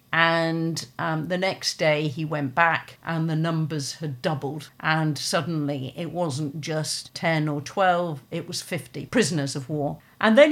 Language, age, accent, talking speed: English, 50-69, British, 165 wpm